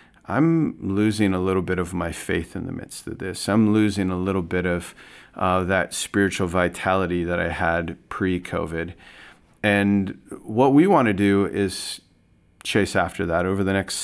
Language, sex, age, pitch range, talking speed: English, male, 40-59, 90-105 Hz, 170 wpm